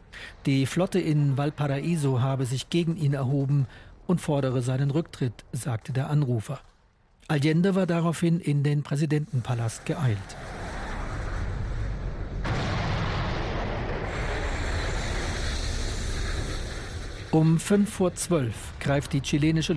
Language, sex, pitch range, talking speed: German, male, 125-160 Hz, 90 wpm